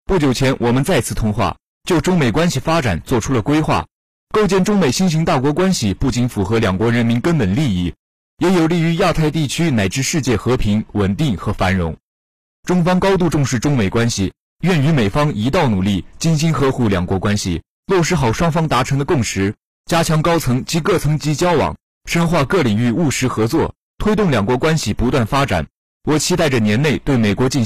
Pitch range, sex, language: 105-160 Hz, male, Chinese